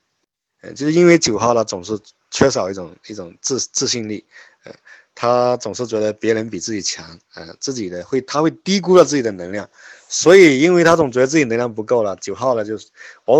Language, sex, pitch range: Chinese, male, 105-150 Hz